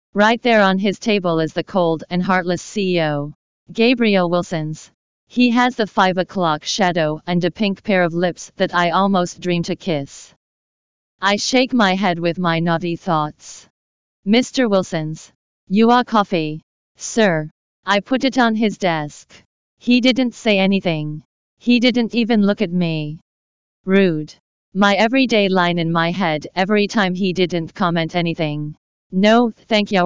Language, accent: English, American